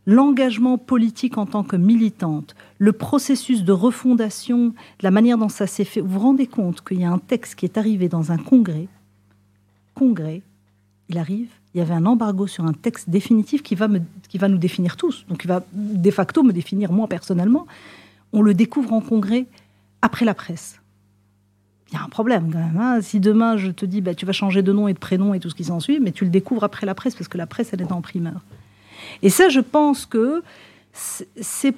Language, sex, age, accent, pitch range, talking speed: French, female, 40-59, French, 175-225 Hz, 220 wpm